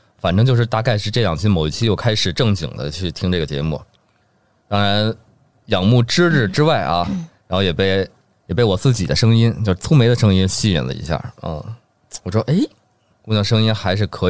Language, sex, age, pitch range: Chinese, male, 20-39, 95-120 Hz